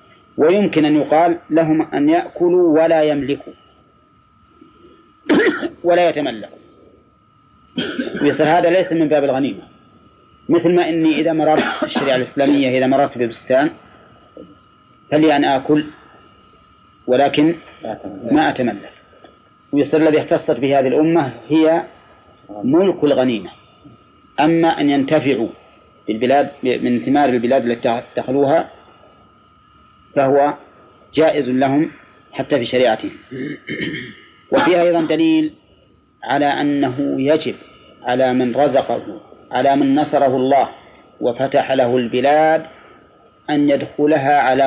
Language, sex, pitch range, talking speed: Arabic, male, 125-160 Hz, 100 wpm